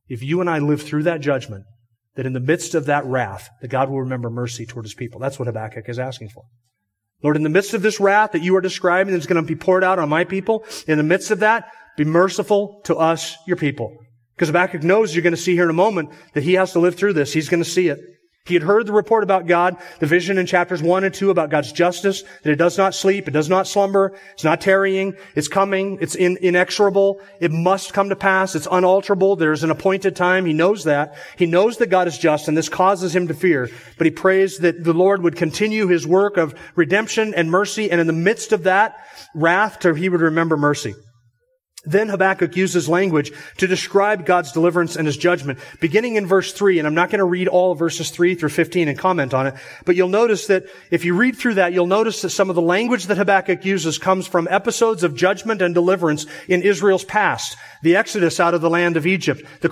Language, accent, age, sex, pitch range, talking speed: English, American, 30-49, male, 160-195 Hz, 235 wpm